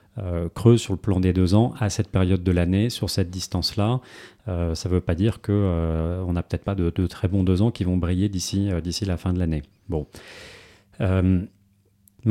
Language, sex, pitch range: French, male, 90-105 Hz